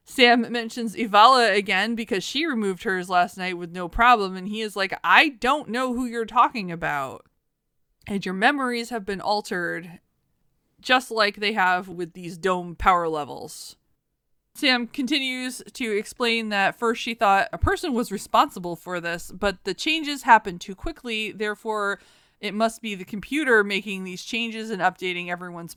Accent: American